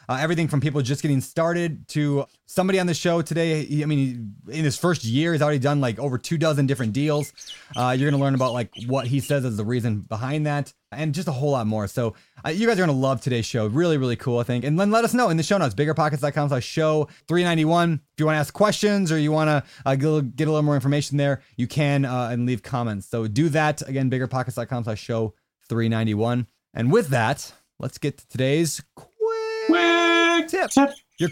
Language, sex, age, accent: English, male, 20-39, American